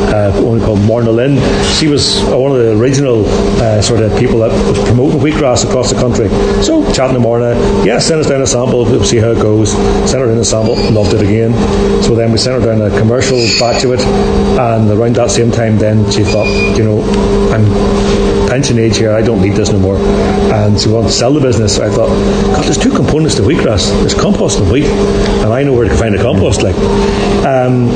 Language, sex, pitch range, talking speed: English, male, 105-125 Hz, 230 wpm